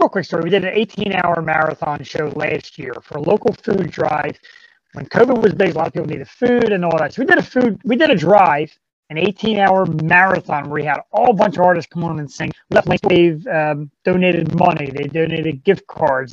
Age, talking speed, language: 30-49, 225 wpm, English